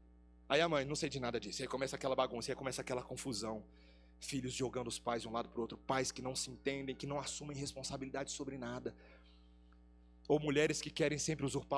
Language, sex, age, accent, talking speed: Portuguese, male, 30-49, Brazilian, 220 wpm